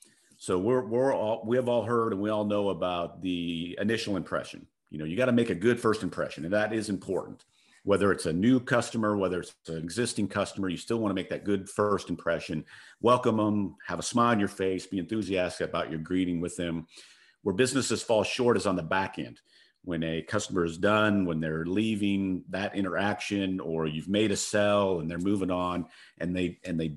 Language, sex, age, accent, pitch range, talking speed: English, male, 50-69, American, 90-110 Hz, 215 wpm